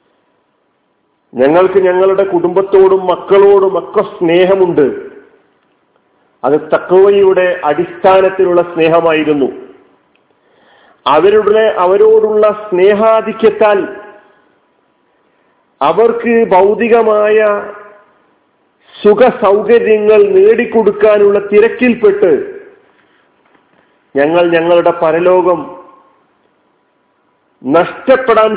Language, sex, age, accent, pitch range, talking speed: Malayalam, male, 50-69, native, 175-225 Hz, 45 wpm